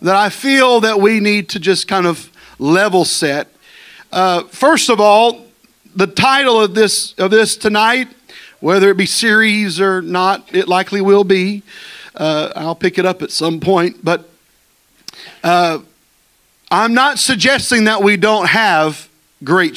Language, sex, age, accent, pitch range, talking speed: English, male, 40-59, American, 185-230 Hz, 155 wpm